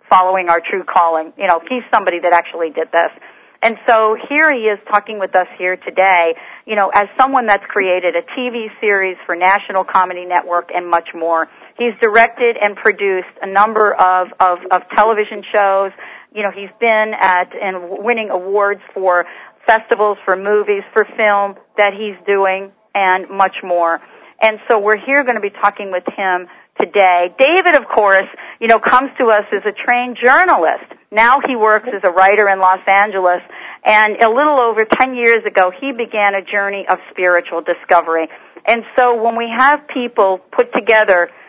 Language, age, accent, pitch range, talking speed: English, 50-69, American, 185-225 Hz, 180 wpm